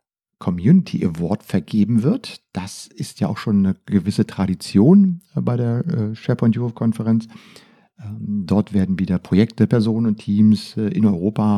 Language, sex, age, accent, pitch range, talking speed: German, male, 50-69, German, 100-130 Hz, 135 wpm